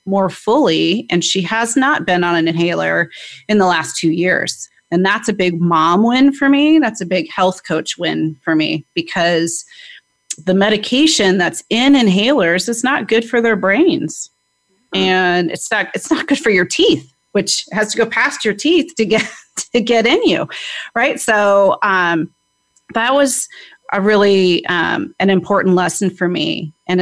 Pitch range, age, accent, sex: 170-215 Hz, 30-49, American, female